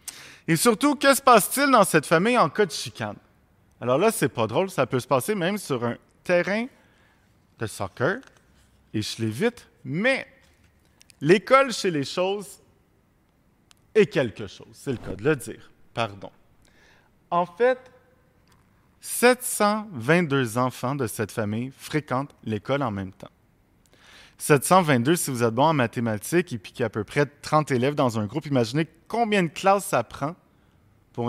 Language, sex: French, male